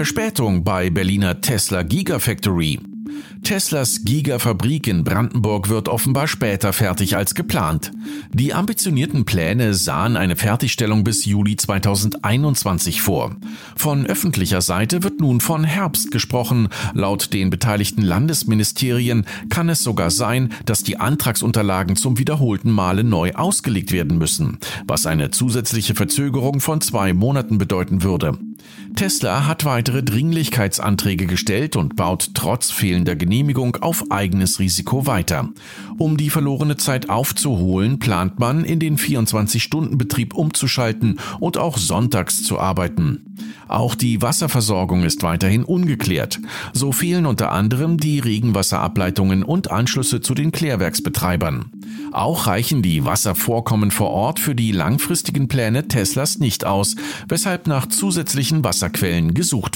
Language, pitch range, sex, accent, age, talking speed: German, 100-145 Hz, male, German, 40-59, 125 wpm